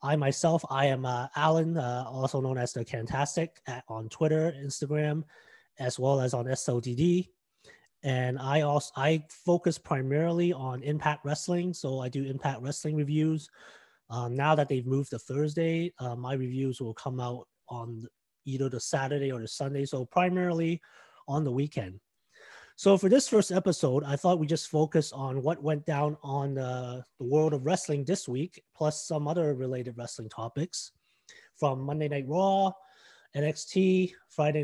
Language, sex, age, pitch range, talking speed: English, male, 30-49, 130-165 Hz, 165 wpm